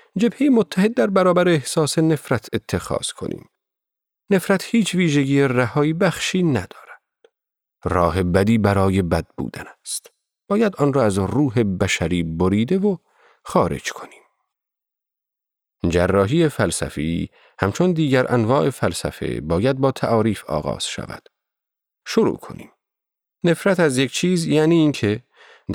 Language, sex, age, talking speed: Persian, male, 40-59, 115 wpm